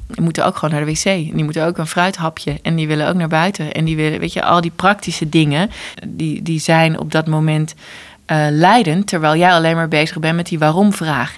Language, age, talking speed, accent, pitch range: English, 20-39, 225 wpm, Dutch, 150-175 Hz